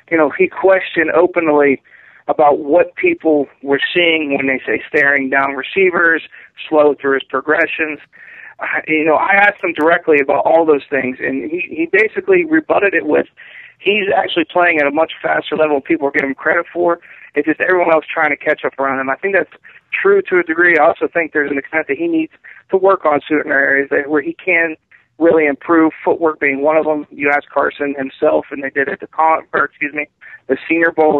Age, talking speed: 40-59, 210 wpm